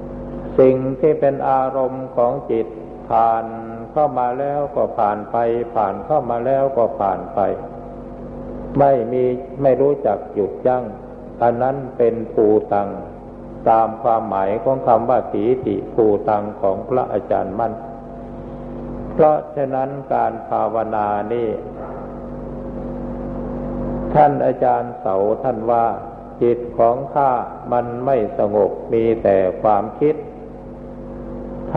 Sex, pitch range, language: male, 110-135 Hz, Thai